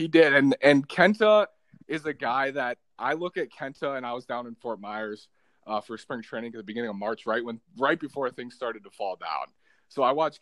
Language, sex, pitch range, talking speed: English, male, 110-155 Hz, 235 wpm